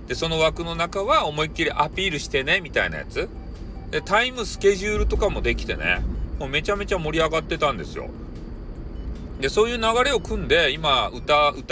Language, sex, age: Japanese, male, 40-59